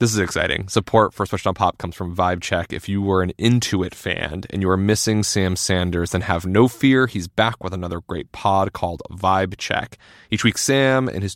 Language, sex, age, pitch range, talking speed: English, male, 20-39, 90-110 Hz, 220 wpm